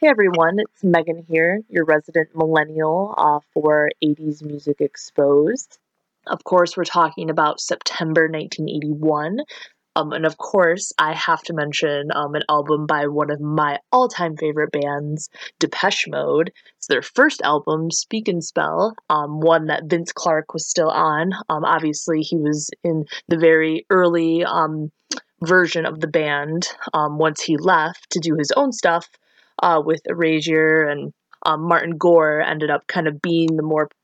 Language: English